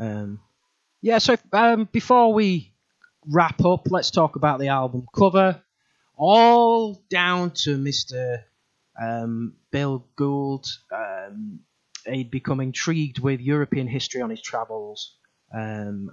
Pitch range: 120-150 Hz